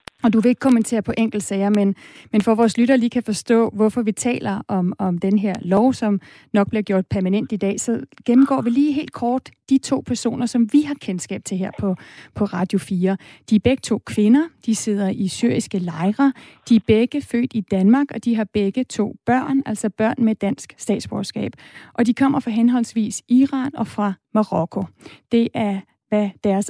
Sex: female